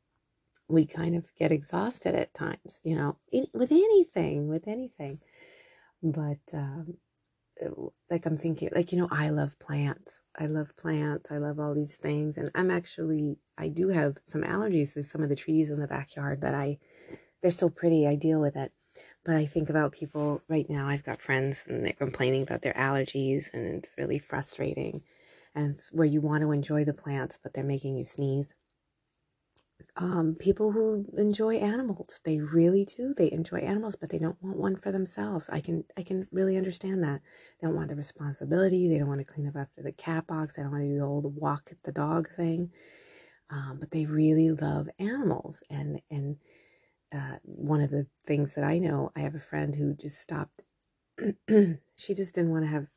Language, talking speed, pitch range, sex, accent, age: English, 195 wpm, 145-180 Hz, female, American, 30-49